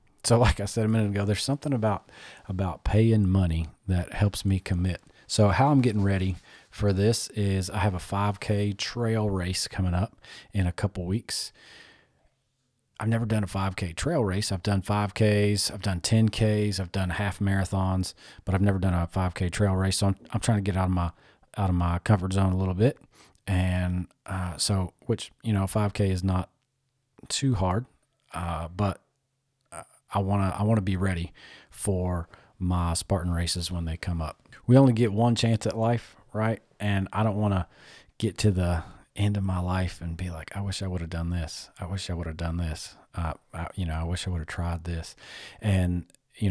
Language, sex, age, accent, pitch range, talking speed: English, male, 40-59, American, 90-110 Hz, 205 wpm